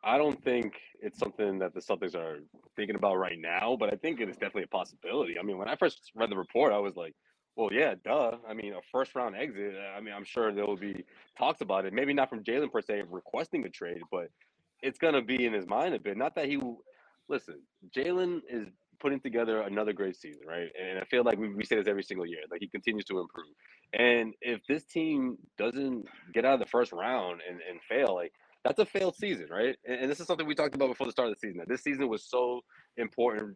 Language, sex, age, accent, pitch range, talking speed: English, male, 20-39, American, 105-145 Hz, 240 wpm